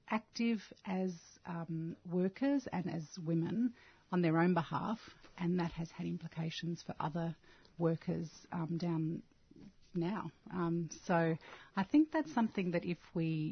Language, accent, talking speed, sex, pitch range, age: English, Australian, 140 wpm, female, 160-180 Hz, 40-59